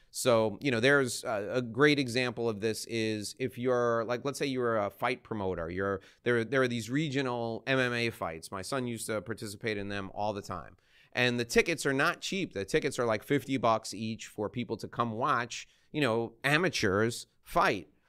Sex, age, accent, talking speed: male, 30-49, American, 195 wpm